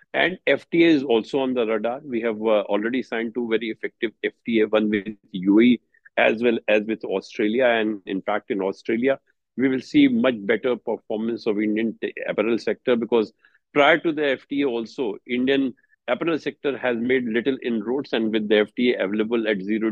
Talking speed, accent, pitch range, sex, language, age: 180 wpm, Indian, 110-140 Hz, male, English, 50-69